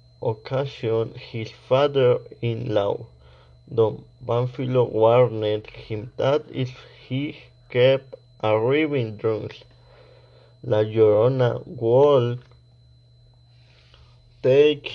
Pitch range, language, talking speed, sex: 120-155 Hz, Spanish, 70 wpm, male